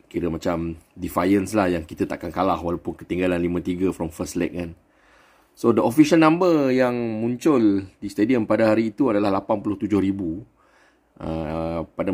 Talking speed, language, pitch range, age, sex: 150 wpm, Malay, 100-125 Hz, 30-49, male